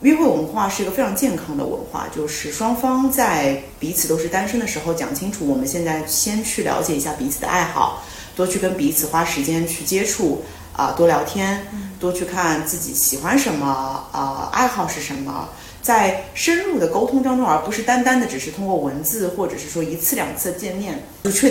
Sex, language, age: female, Chinese, 30-49